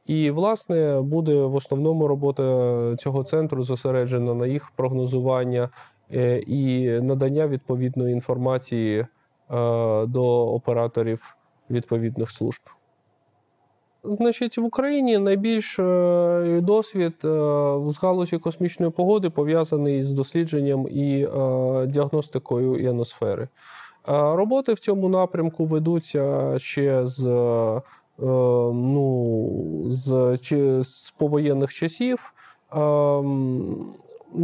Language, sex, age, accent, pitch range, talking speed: Ukrainian, male, 20-39, native, 130-165 Hz, 85 wpm